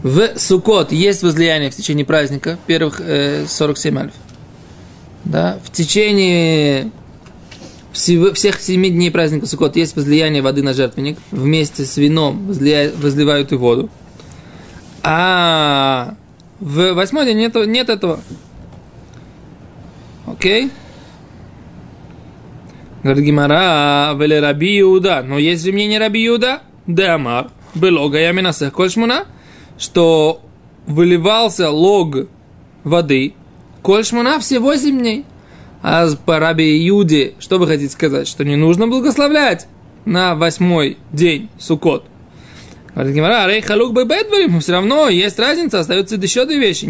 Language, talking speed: Russian, 115 wpm